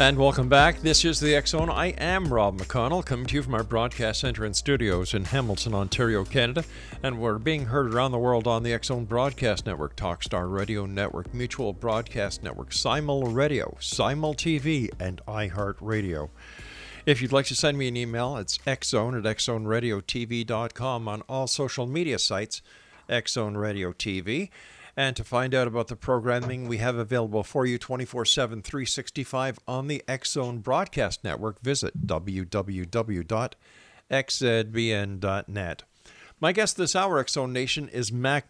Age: 50-69